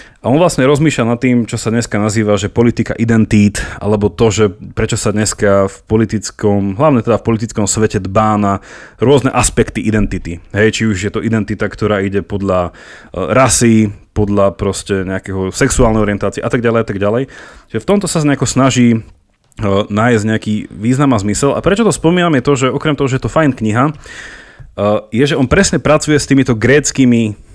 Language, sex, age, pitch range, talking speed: Slovak, male, 30-49, 105-135 Hz, 170 wpm